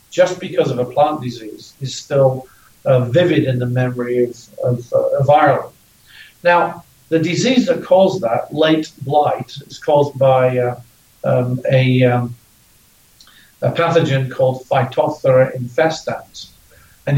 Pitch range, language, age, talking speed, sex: 125-155 Hz, English, 50-69, 135 wpm, male